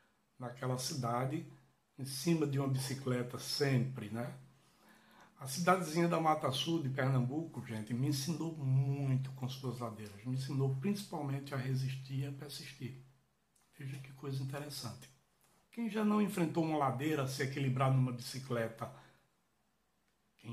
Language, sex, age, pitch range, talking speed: Portuguese, male, 60-79, 130-170 Hz, 135 wpm